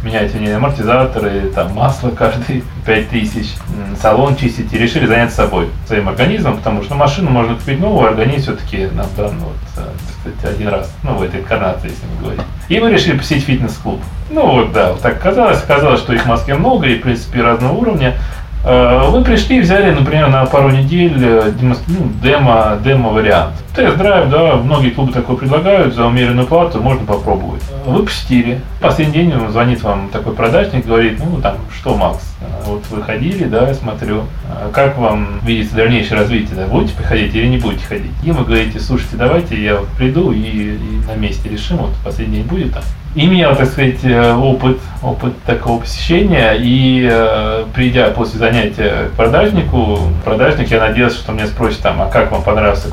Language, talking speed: Russian, 175 wpm